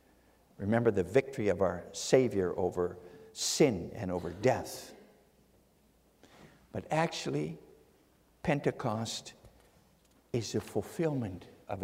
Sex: male